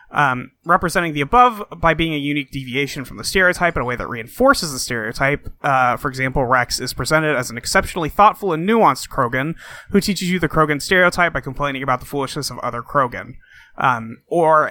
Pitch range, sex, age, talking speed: 135-180 Hz, male, 30-49, 195 wpm